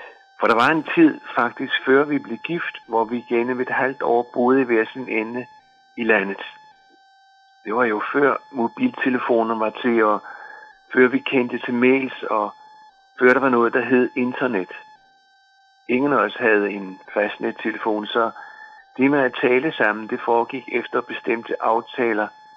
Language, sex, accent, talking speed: Danish, male, native, 160 wpm